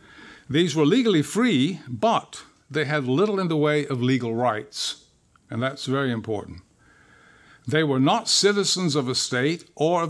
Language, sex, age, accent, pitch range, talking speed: English, male, 60-79, American, 125-160 Hz, 160 wpm